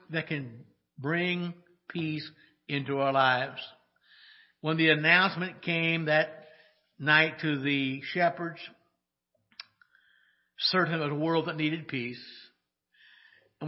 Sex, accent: male, American